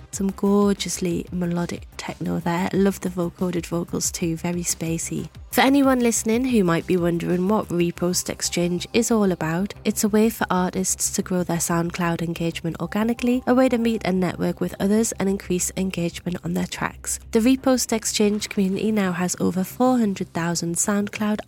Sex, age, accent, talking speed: female, 30-49, British, 165 wpm